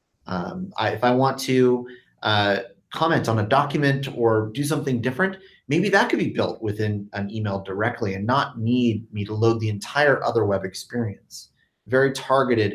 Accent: American